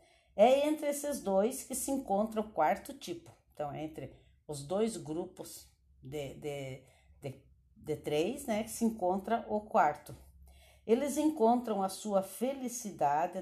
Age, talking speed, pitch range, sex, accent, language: 60-79, 145 wpm, 160-220 Hz, female, Brazilian, Portuguese